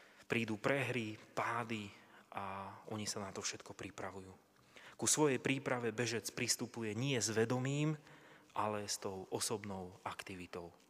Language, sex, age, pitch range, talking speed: Slovak, male, 30-49, 110-130 Hz, 125 wpm